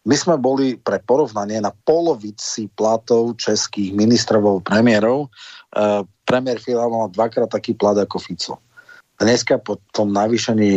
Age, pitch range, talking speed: 40-59, 100-115 Hz, 140 wpm